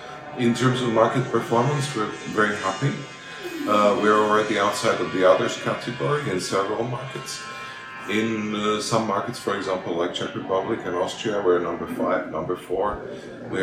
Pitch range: 80-105 Hz